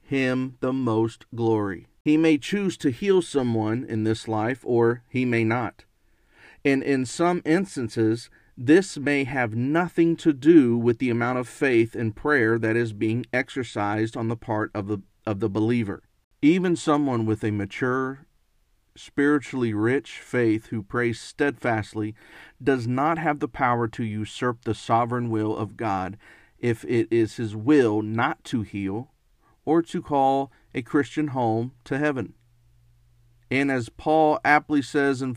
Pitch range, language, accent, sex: 110-140 Hz, English, American, male